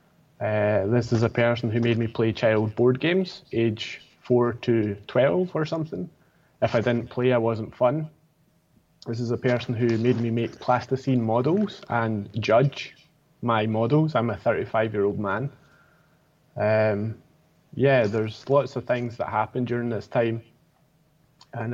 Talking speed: 150 wpm